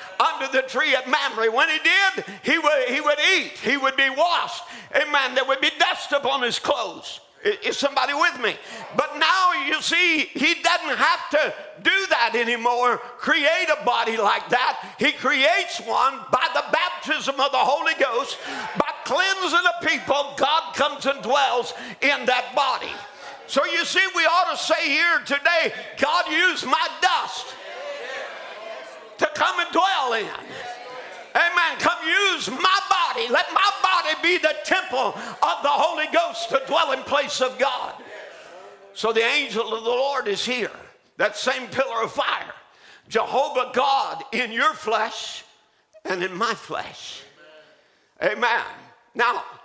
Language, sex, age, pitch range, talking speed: English, male, 50-69, 245-335 Hz, 155 wpm